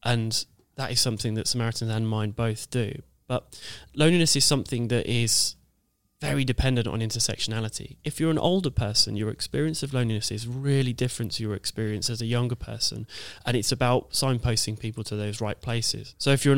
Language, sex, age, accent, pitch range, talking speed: English, male, 20-39, British, 110-130 Hz, 185 wpm